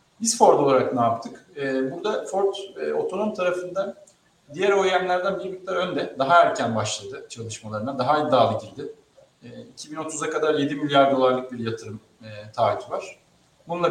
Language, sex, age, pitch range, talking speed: Turkish, male, 40-59, 130-170 Hz, 130 wpm